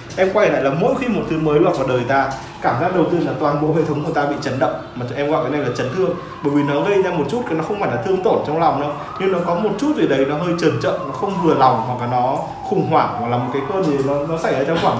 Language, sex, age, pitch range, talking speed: Vietnamese, male, 20-39, 140-190 Hz, 335 wpm